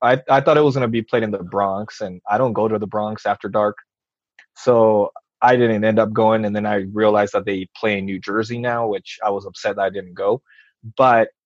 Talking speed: 240 wpm